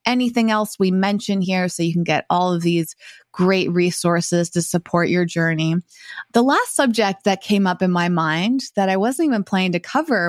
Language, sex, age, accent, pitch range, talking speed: English, female, 20-39, American, 175-210 Hz, 200 wpm